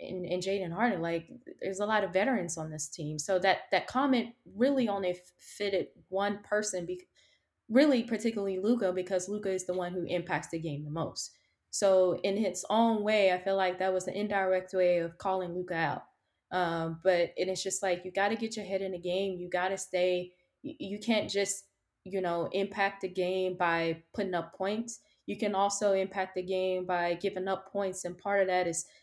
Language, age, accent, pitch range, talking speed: English, 20-39, American, 175-200 Hz, 210 wpm